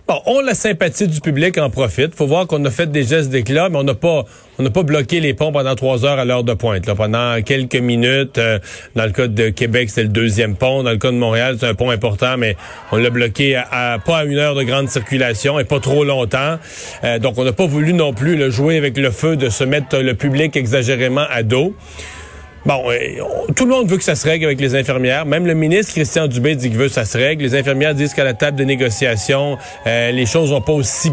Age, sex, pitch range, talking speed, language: 40-59, male, 125-155 Hz, 255 wpm, French